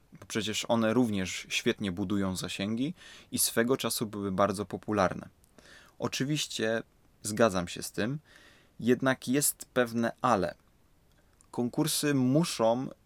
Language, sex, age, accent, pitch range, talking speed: Polish, male, 20-39, native, 100-125 Hz, 110 wpm